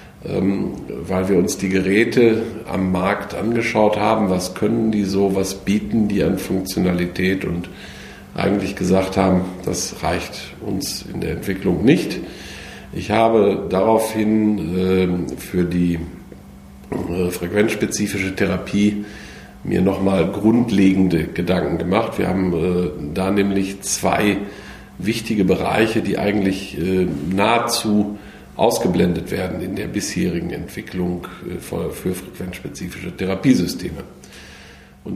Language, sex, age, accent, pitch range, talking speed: German, male, 50-69, German, 90-105 Hz, 115 wpm